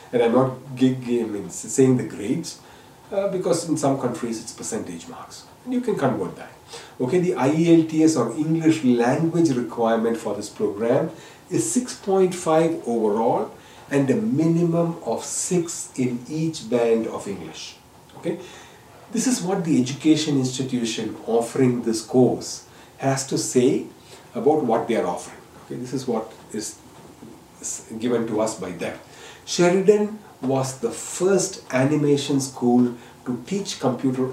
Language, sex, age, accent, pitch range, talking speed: English, male, 40-59, Indian, 120-160 Hz, 140 wpm